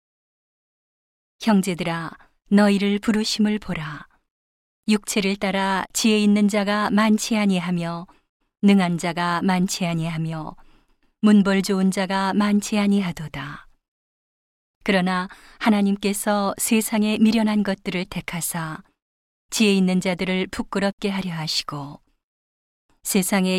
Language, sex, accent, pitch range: Korean, female, native, 175-205 Hz